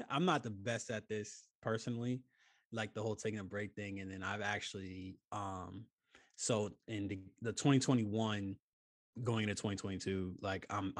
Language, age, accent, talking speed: English, 20-39, American, 160 wpm